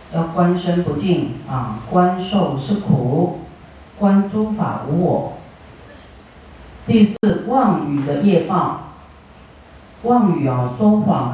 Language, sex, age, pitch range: Chinese, female, 40-59, 140-195 Hz